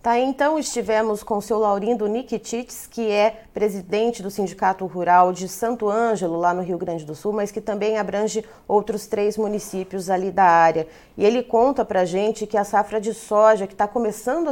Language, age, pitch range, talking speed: Portuguese, 30-49, 195-235 Hz, 190 wpm